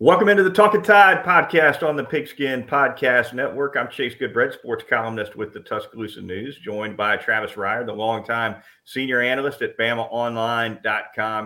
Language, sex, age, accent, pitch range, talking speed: English, male, 40-59, American, 110-140 Hz, 155 wpm